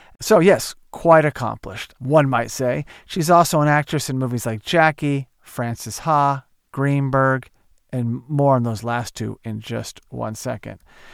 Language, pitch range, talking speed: English, 120-150 Hz, 150 wpm